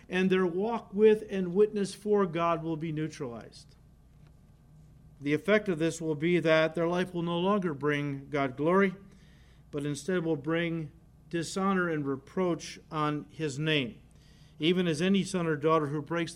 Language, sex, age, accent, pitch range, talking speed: English, male, 50-69, American, 150-185 Hz, 160 wpm